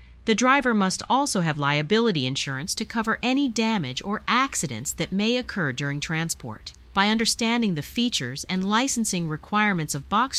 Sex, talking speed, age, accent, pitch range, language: female, 155 wpm, 40-59, American, 140-225 Hz, English